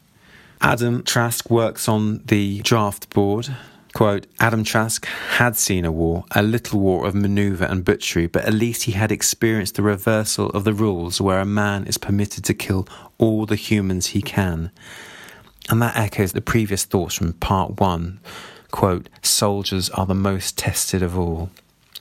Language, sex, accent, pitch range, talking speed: English, male, British, 95-115 Hz, 165 wpm